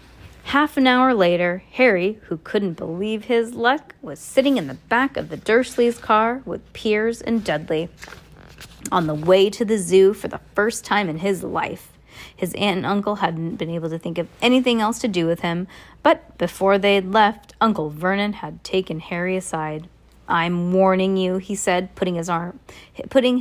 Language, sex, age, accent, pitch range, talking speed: English, female, 30-49, American, 175-220 Hz, 180 wpm